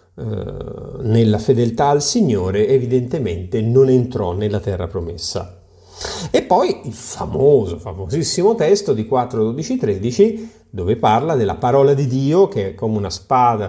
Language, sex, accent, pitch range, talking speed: Italian, male, native, 100-140 Hz, 135 wpm